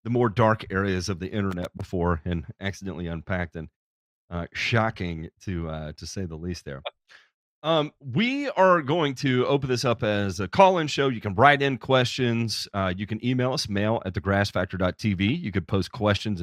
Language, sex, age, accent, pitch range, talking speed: English, male, 40-59, American, 95-125 Hz, 185 wpm